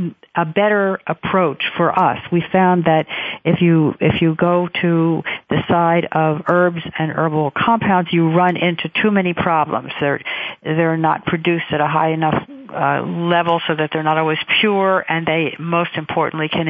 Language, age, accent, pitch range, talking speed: English, 50-69, American, 155-180 Hz, 175 wpm